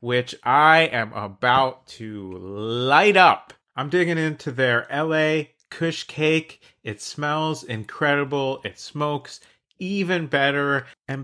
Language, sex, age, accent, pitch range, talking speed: English, male, 30-49, American, 115-175 Hz, 115 wpm